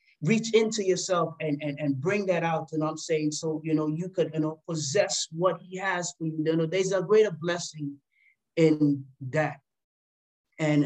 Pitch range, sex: 140-175 Hz, male